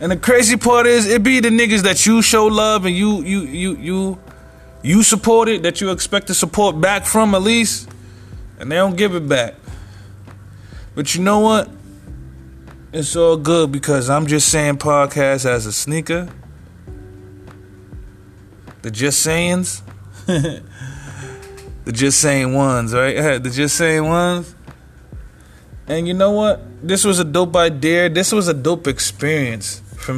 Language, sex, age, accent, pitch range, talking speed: English, male, 20-39, American, 100-165 Hz, 155 wpm